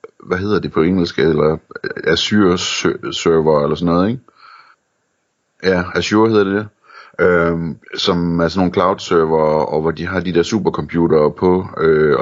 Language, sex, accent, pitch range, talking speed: Danish, male, native, 80-95 Hz, 155 wpm